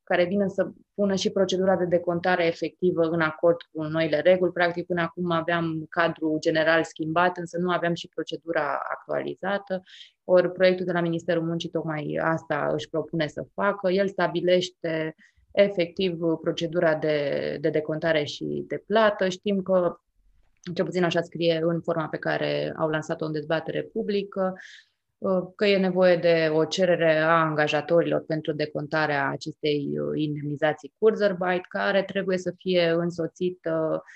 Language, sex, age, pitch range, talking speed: Romanian, female, 20-39, 155-180 Hz, 145 wpm